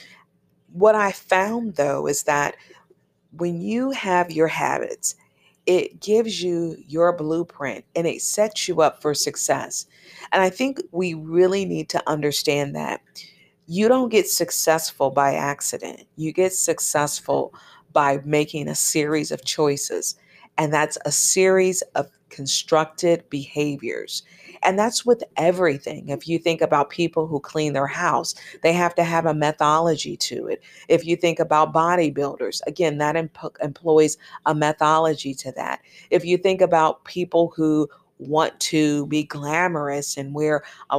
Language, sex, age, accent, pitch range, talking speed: English, female, 40-59, American, 150-185 Hz, 145 wpm